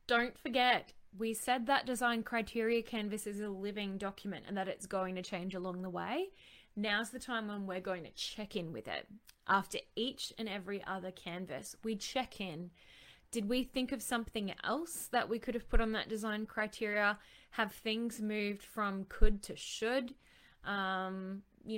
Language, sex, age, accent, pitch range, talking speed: English, female, 20-39, Australian, 195-230 Hz, 180 wpm